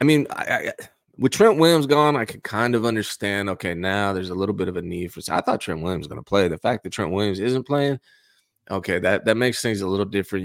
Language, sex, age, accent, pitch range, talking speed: English, male, 20-39, American, 90-115 Hz, 265 wpm